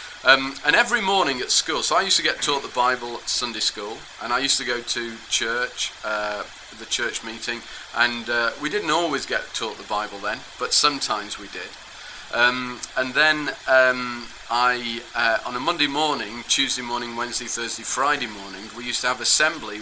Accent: British